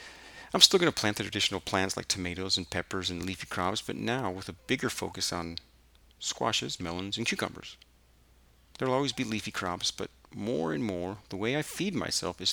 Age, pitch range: 40-59, 65-105 Hz